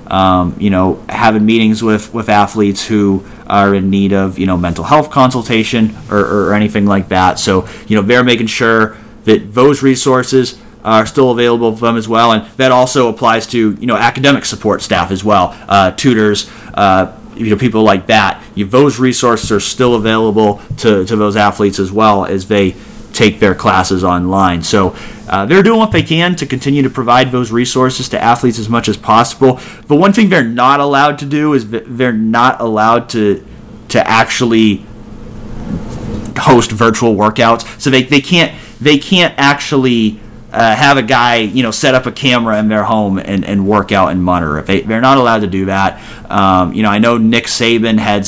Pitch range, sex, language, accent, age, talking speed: 105-125 Hz, male, English, American, 30-49, 195 wpm